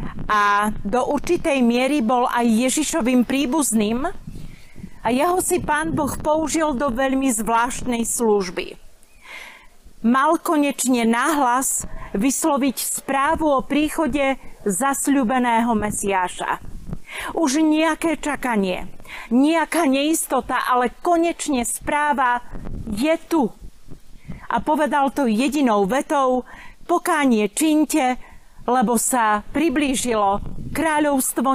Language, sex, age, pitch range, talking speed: Slovak, female, 40-59, 240-310 Hz, 90 wpm